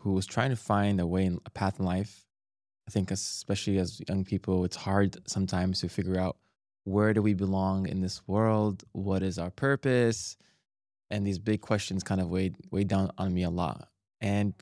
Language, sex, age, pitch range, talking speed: English, male, 20-39, 95-110 Hz, 200 wpm